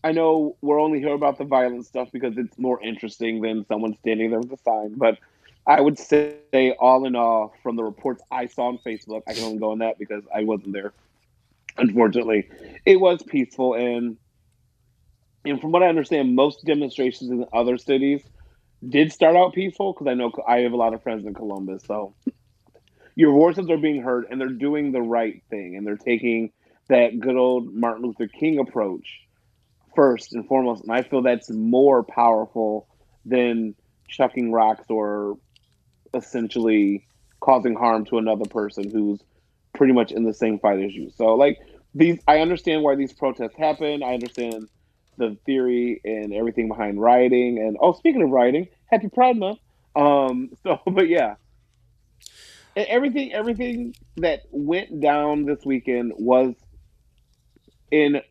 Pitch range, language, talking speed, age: 110-145 Hz, English, 165 wpm, 30-49